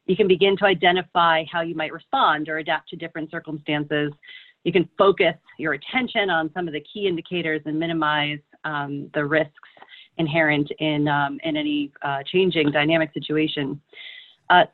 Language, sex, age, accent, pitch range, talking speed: English, female, 40-59, American, 155-190 Hz, 165 wpm